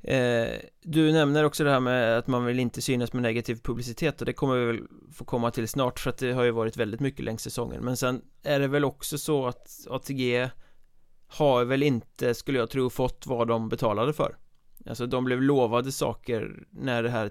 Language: Swedish